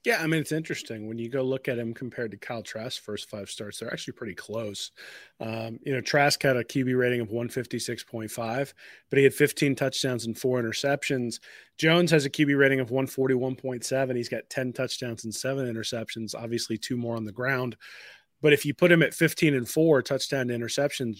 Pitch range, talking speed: 115-135 Hz, 200 wpm